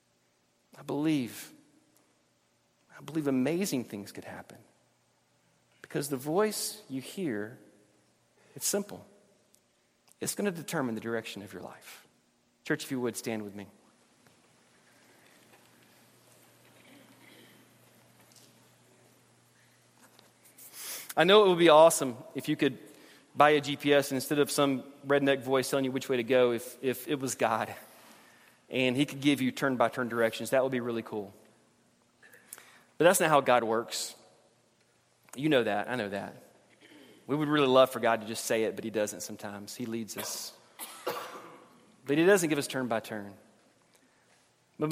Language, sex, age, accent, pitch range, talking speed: English, male, 40-59, American, 115-150 Hz, 145 wpm